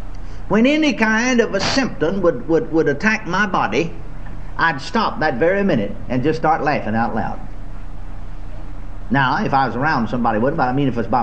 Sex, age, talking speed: male, 60-79, 190 wpm